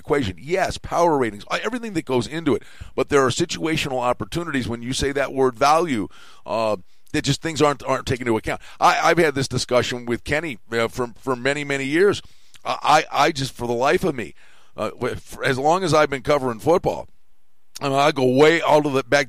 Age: 50-69